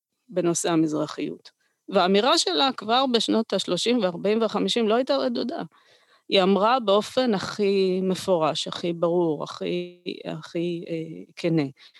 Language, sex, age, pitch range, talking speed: Hebrew, female, 30-49, 165-205 Hz, 105 wpm